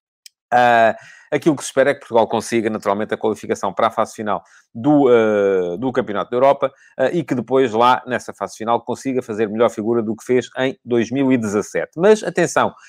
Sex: male